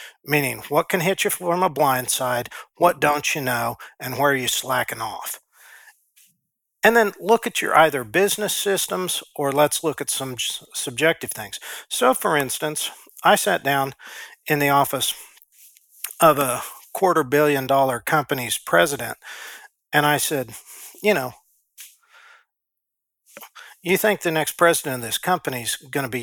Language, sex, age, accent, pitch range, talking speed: English, male, 50-69, American, 125-165 Hz, 150 wpm